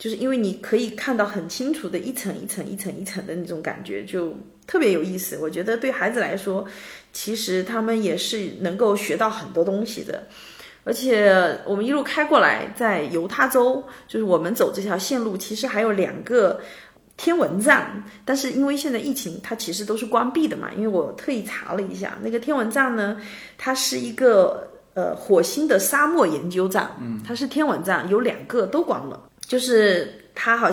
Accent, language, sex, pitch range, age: native, Chinese, female, 195-255 Hz, 30-49